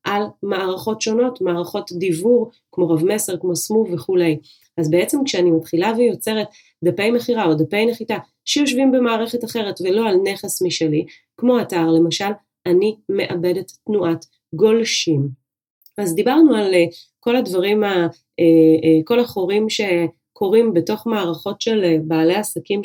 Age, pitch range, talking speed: 30-49, 170-215 Hz, 130 wpm